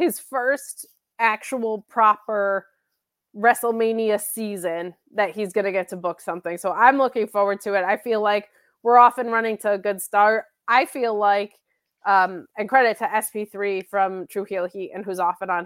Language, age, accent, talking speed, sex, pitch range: English, 20-39, American, 175 wpm, female, 190-235 Hz